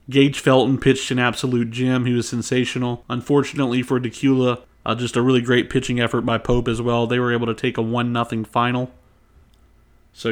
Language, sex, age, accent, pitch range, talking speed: English, male, 30-49, American, 115-135 Hz, 185 wpm